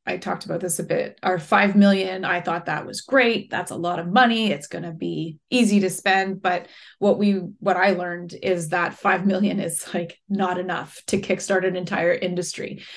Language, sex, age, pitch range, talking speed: English, female, 20-39, 180-200 Hz, 210 wpm